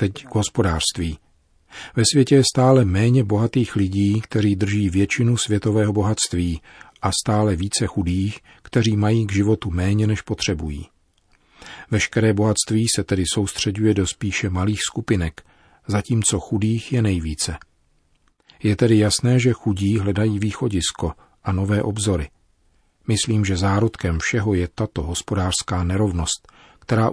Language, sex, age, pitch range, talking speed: Czech, male, 40-59, 95-115 Hz, 130 wpm